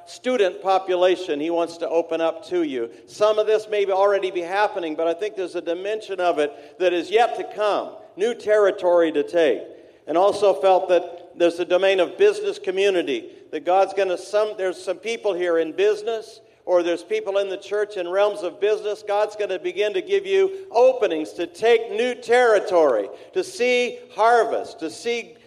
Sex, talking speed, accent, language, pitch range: male, 190 wpm, American, English, 180-235 Hz